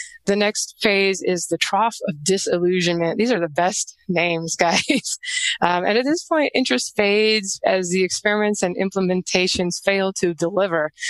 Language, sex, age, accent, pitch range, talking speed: English, female, 20-39, American, 175-220 Hz, 155 wpm